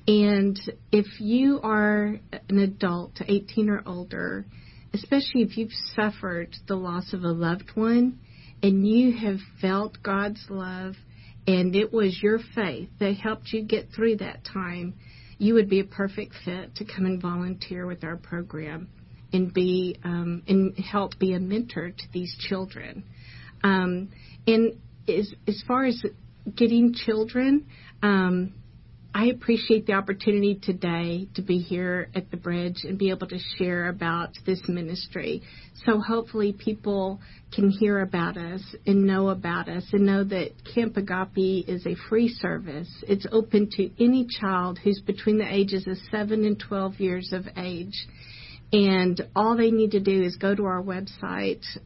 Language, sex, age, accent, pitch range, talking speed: English, female, 50-69, American, 180-210 Hz, 155 wpm